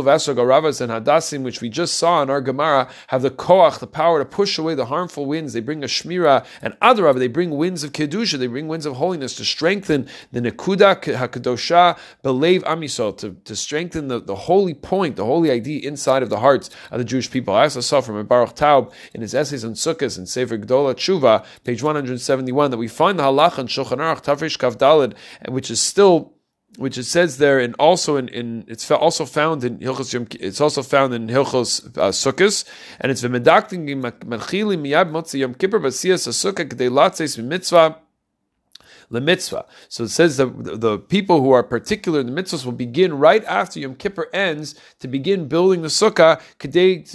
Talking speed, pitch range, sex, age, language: 180 wpm, 125-165 Hz, male, 30-49, English